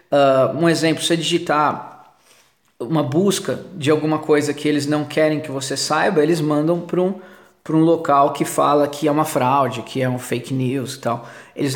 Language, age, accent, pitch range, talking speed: Portuguese, 20-39, Brazilian, 140-160 Hz, 190 wpm